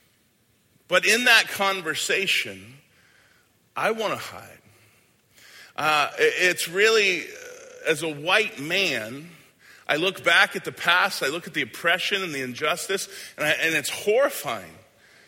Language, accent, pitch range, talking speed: English, American, 135-195 Hz, 125 wpm